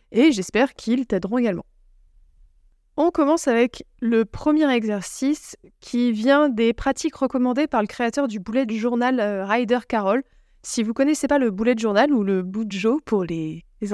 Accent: French